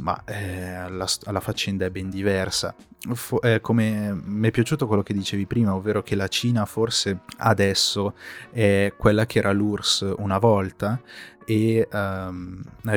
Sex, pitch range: male, 95-110 Hz